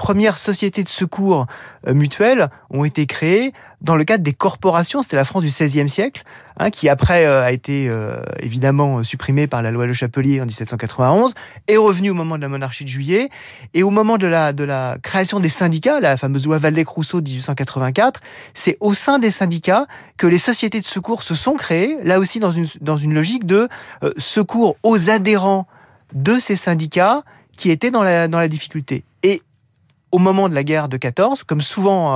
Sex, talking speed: male, 195 wpm